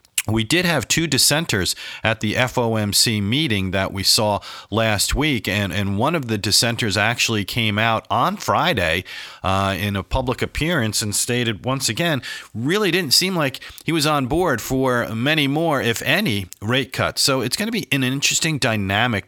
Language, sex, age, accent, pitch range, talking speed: English, male, 40-59, American, 105-140 Hz, 175 wpm